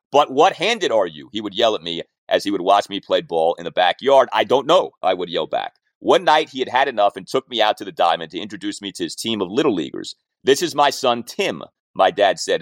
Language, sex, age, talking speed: English, male, 30-49, 270 wpm